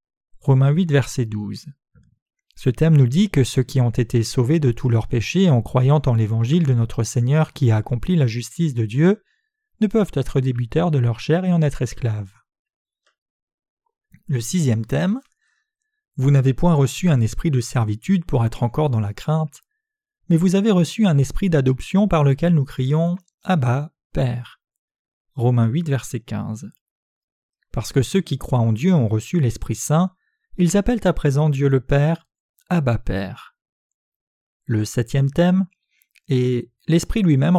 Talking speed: 165 wpm